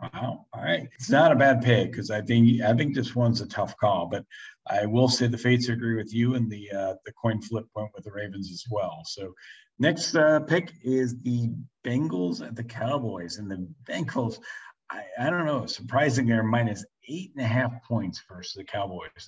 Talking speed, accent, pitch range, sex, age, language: 210 wpm, American, 105-125 Hz, male, 50-69, English